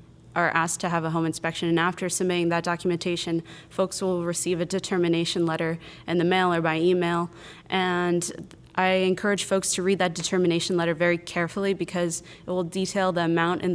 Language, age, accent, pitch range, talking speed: English, 20-39, American, 170-185 Hz, 185 wpm